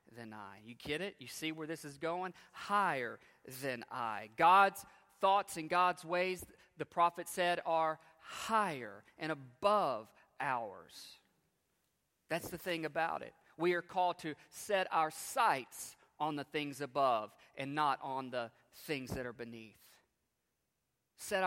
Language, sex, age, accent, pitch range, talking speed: English, male, 40-59, American, 135-175 Hz, 145 wpm